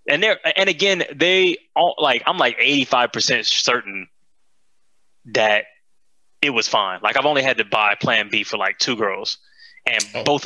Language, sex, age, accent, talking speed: English, male, 20-39, American, 165 wpm